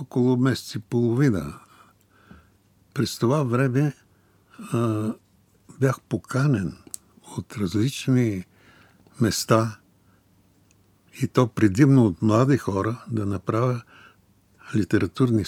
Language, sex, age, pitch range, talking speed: Bulgarian, male, 60-79, 95-120 Hz, 85 wpm